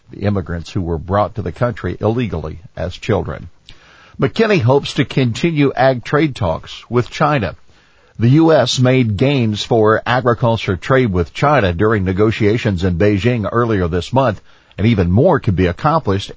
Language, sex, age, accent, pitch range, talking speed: English, male, 50-69, American, 95-120 Hz, 150 wpm